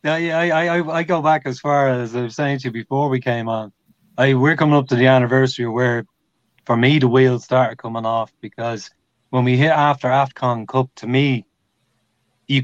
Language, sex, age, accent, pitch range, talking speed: English, male, 30-49, Irish, 125-145 Hz, 210 wpm